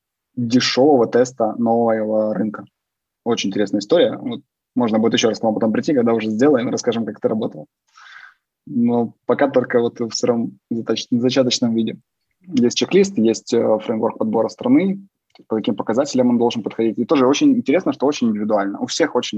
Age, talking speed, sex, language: 20-39, 170 wpm, male, Russian